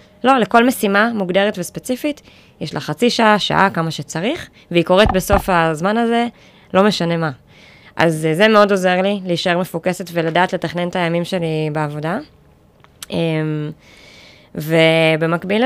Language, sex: Hebrew, female